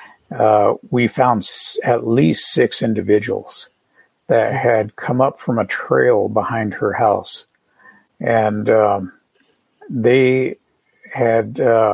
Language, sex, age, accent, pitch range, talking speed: English, male, 60-79, American, 105-125 Hz, 110 wpm